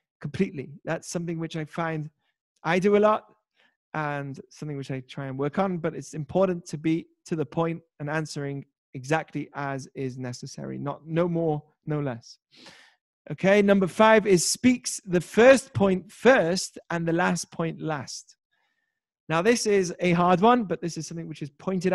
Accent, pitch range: British, 155-190 Hz